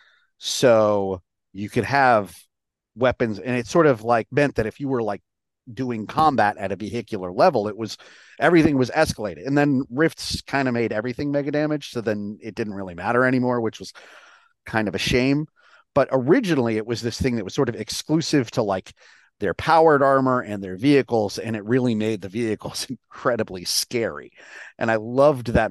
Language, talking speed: English, 185 wpm